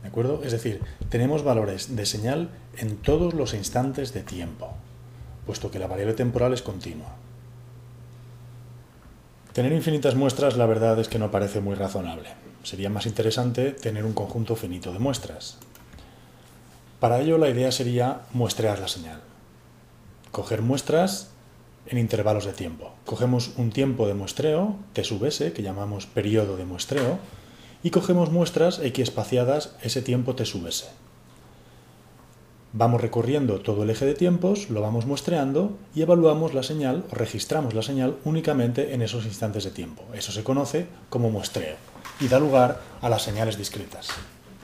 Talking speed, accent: 150 wpm, Spanish